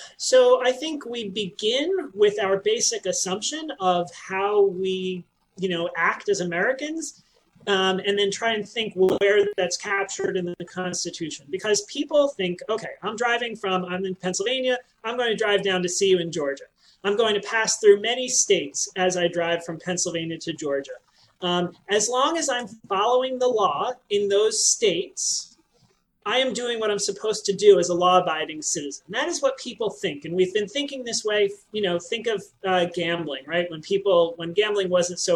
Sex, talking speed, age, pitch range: male, 185 wpm, 30-49, 175-230 Hz